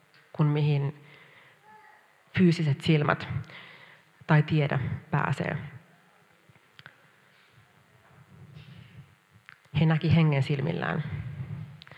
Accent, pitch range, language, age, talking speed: native, 140-160 Hz, Finnish, 30-49, 50 wpm